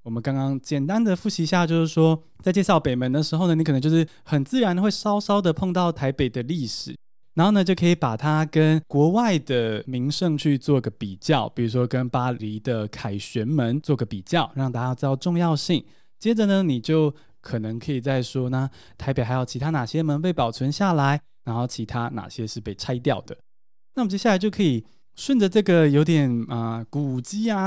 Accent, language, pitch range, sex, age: native, Chinese, 125-170 Hz, male, 20-39